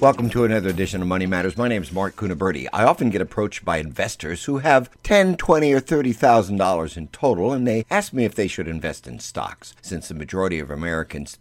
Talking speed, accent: 225 wpm, American